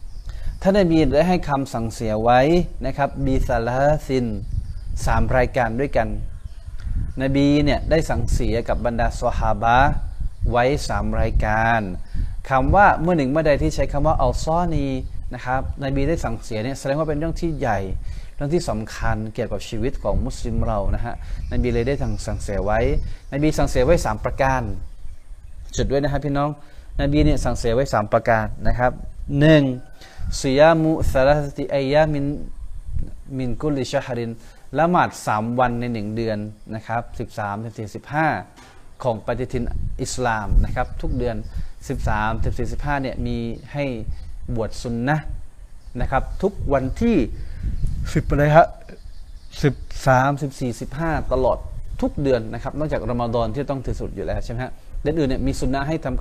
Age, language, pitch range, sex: 20-39, Thai, 110-140 Hz, male